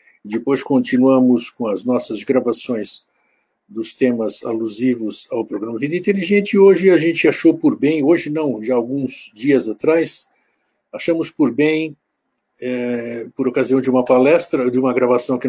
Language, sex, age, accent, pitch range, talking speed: Portuguese, male, 60-79, Brazilian, 125-150 Hz, 150 wpm